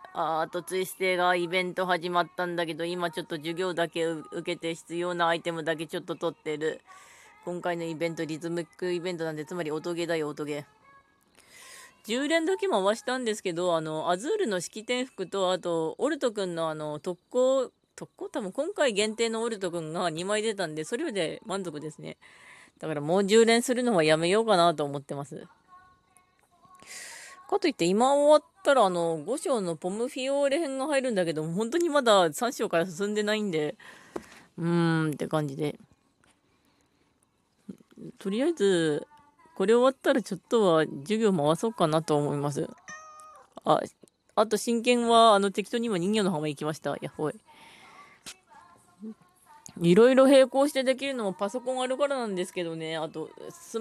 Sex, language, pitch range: female, Japanese, 170-255 Hz